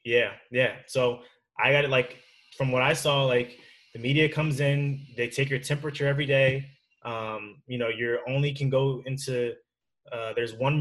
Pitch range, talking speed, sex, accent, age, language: 125-140 Hz, 185 wpm, male, American, 20-39, English